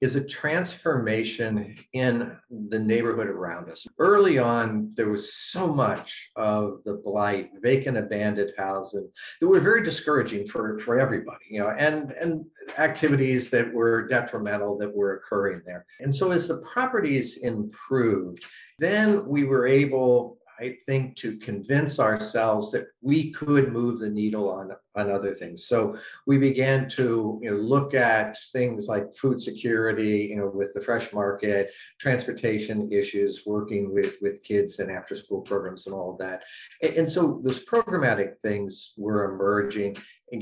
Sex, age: male, 50-69